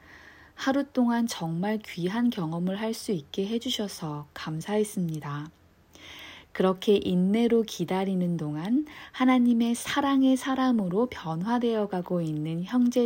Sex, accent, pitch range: female, native, 165-235 Hz